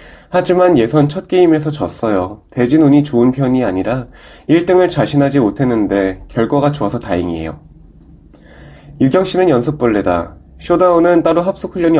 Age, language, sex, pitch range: 20-39, Korean, male, 110-160 Hz